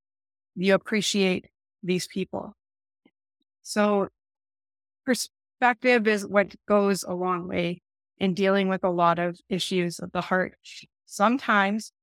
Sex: female